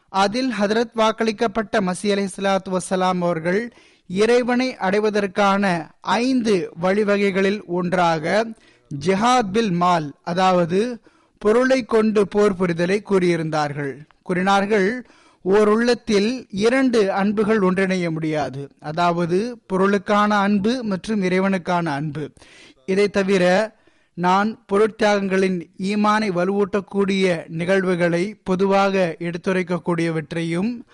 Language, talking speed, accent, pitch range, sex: Tamil, 85 wpm, native, 185-220 Hz, male